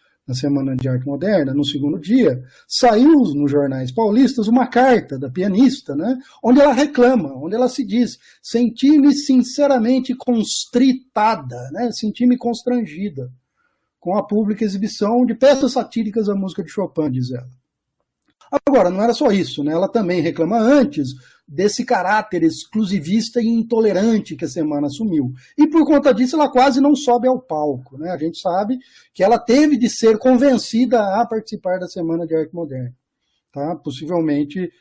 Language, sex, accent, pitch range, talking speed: Portuguese, male, Brazilian, 145-245 Hz, 155 wpm